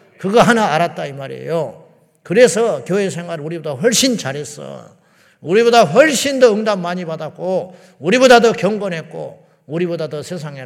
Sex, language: male, Korean